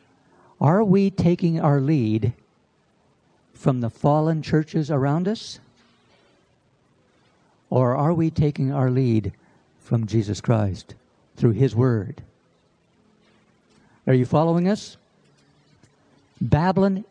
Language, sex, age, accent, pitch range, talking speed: English, male, 60-79, American, 125-155 Hz, 100 wpm